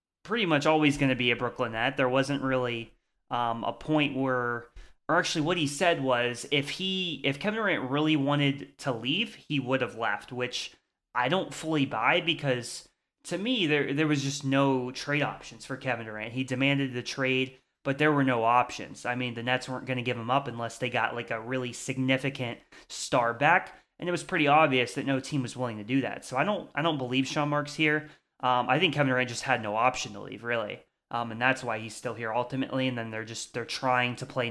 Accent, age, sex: American, 30-49, male